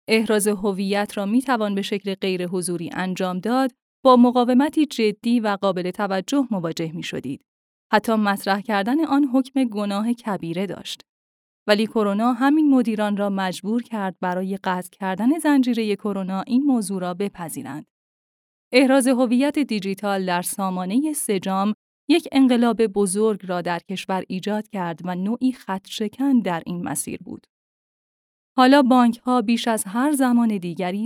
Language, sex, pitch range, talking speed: Persian, female, 190-250 Hz, 145 wpm